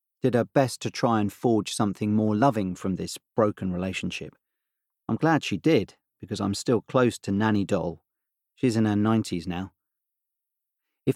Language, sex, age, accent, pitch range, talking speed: English, male, 40-59, British, 100-125 Hz, 165 wpm